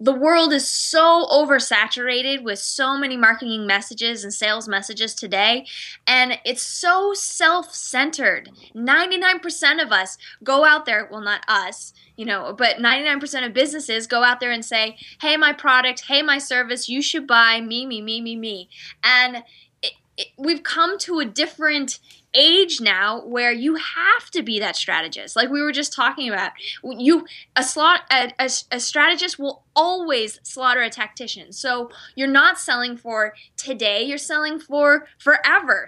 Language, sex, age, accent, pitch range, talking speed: English, female, 10-29, American, 235-310 Hz, 160 wpm